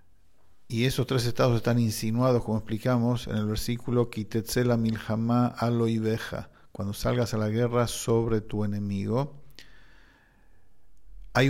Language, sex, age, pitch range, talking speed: English, male, 50-69, 105-125 Hz, 105 wpm